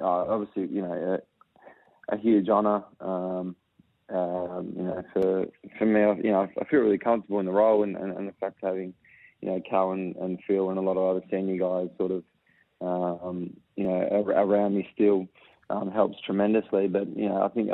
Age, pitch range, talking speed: 20-39, 95-105 Hz, 205 wpm